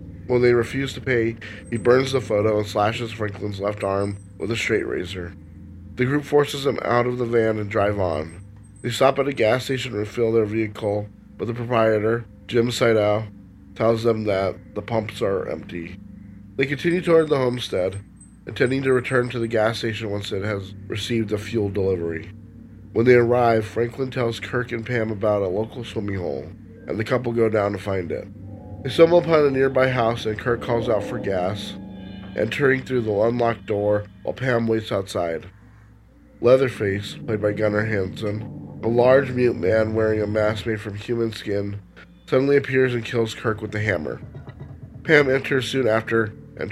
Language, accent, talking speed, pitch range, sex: English, American, 180 wpm, 105-120 Hz, male